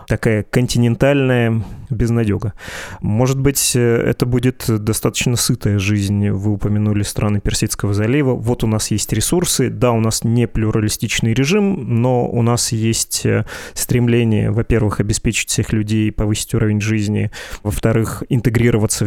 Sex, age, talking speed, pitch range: male, 20-39, 125 wpm, 105-120 Hz